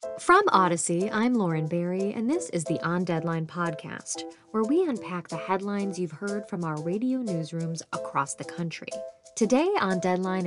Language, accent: English, American